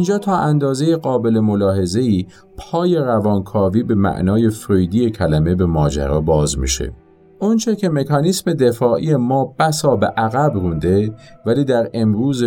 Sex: male